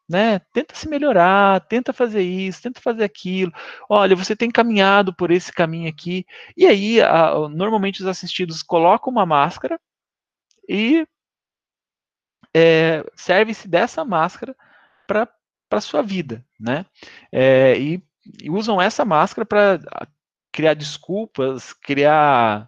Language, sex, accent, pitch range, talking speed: Portuguese, male, Brazilian, 155-200 Hz, 125 wpm